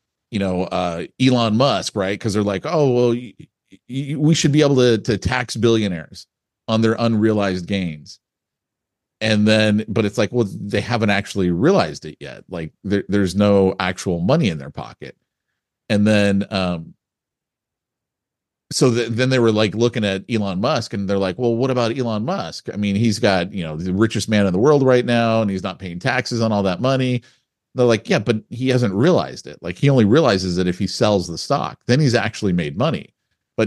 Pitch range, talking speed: 95-120 Hz, 205 wpm